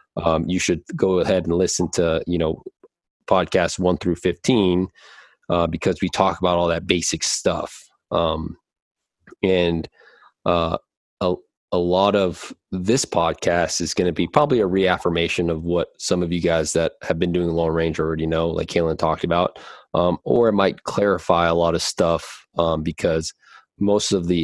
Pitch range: 80-90 Hz